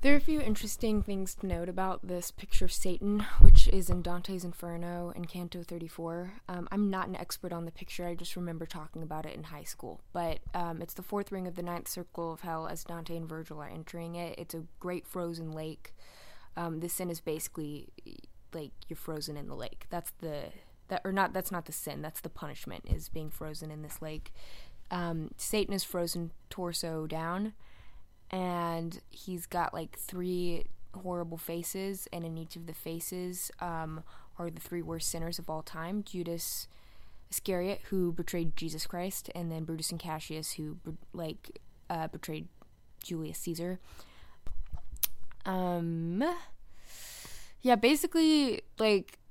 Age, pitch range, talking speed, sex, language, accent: 20-39, 160-180 Hz, 170 wpm, female, English, American